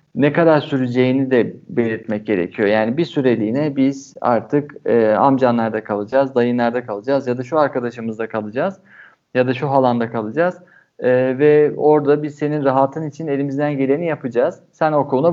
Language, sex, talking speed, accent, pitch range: Turkish, male, 150 wpm, native, 125-150 Hz